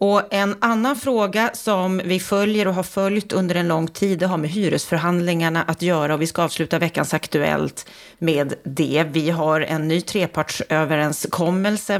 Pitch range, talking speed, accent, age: 165-200 Hz, 165 wpm, native, 30-49